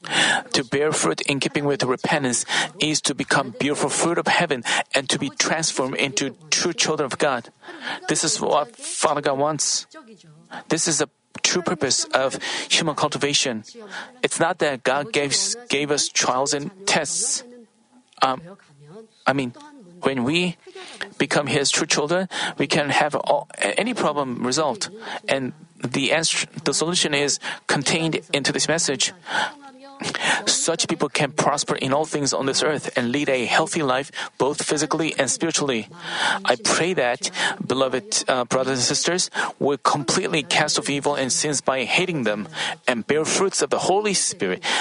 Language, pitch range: Korean, 140-190 Hz